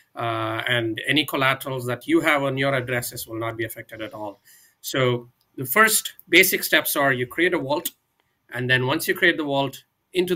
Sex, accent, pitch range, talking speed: male, Indian, 120-145 Hz, 195 wpm